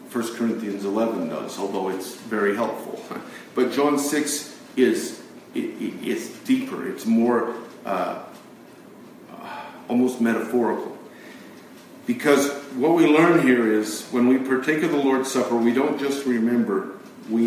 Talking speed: 135 wpm